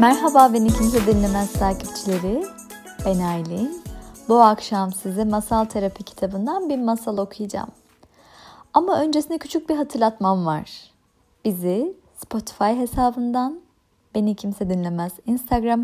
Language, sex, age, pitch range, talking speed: Turkish, female, 30-49, 200-265 Hz, 110 wpm